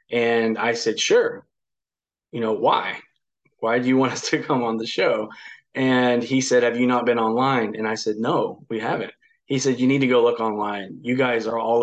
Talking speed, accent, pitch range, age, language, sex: 220 wpm, American, 115-125 Hz, 20-39, English, male